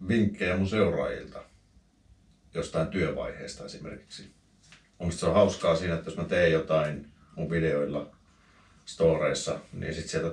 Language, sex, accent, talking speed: Finnish, male, native, 135 wpm